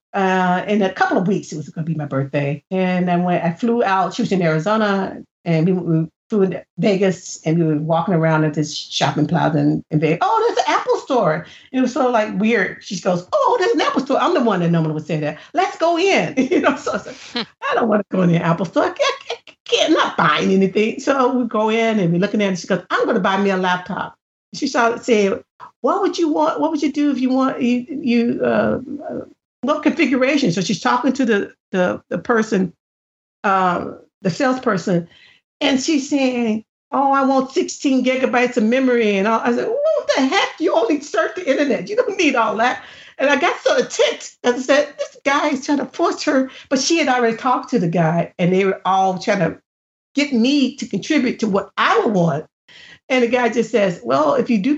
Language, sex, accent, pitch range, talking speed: English, female, American, 185-285 Hz, 230 wpm